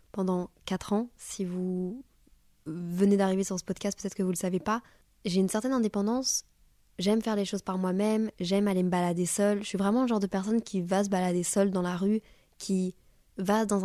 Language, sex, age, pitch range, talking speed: French, female, 20-39, 180-210 Hz, 215 wpm